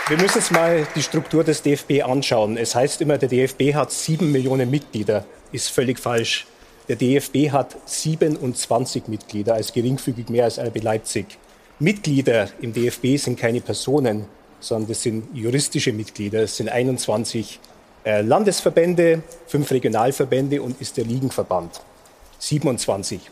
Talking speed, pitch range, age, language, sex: 140 wpm, 125-150 Hz, 40-59, German, male